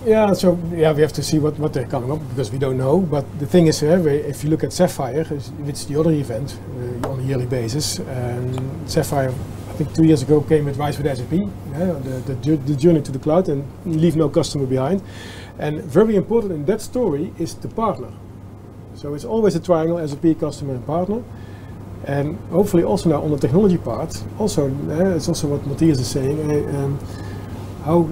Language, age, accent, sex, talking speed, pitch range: Dutch, 40-59, Dutch, male, 210 wpm, 125-165 Hz